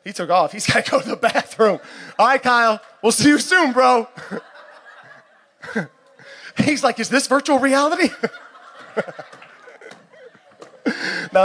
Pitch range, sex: 175-255 Hz, male